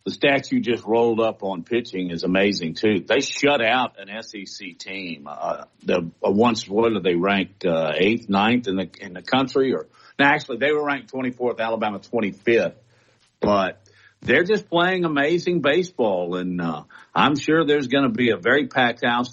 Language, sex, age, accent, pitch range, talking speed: English, male, 50-69, American, 105-130 Hz, 185 wpm